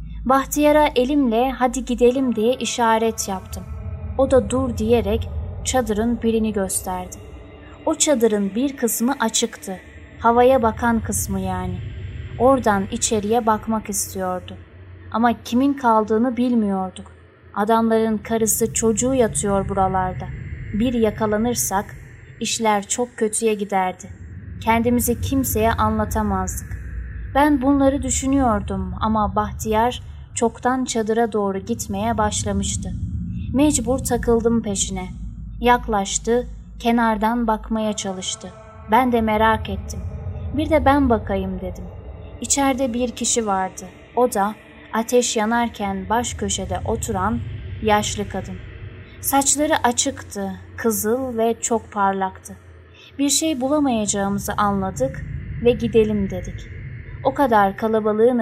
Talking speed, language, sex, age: 105 wpm, Turkish, female, 20-39